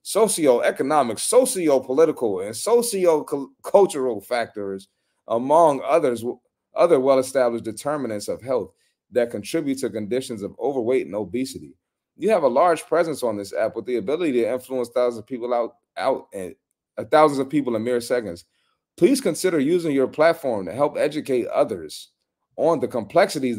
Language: English